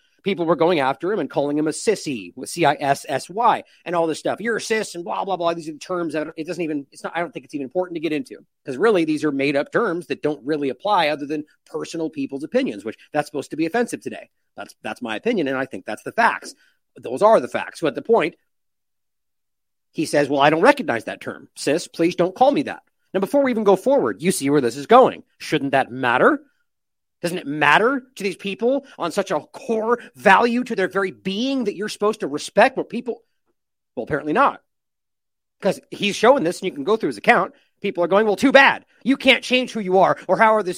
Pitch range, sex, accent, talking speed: 155-225 Hz, male, American, 240 wpm